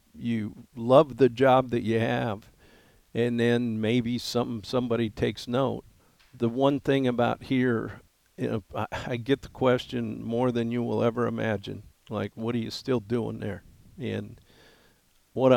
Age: 50-69